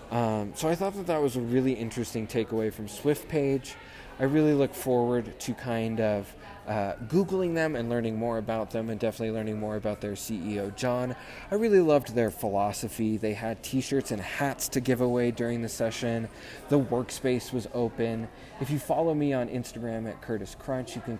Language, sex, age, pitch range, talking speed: English, male, 20-39, 110-135 Hz, 195 wpm